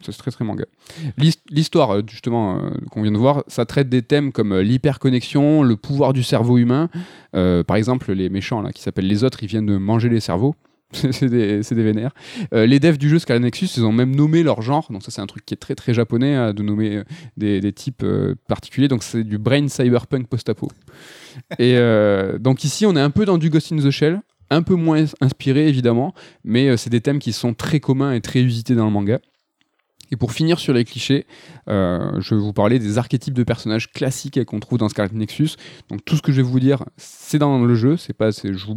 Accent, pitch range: French, 115-145 Hz